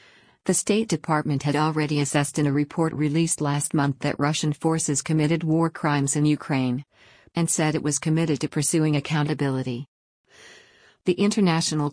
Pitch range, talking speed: 145-165 Hz, 150 wpm